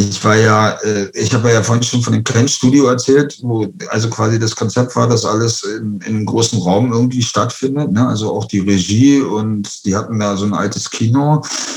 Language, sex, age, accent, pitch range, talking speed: German, male, 50-69, German, 100-115 Hz, 200 wpm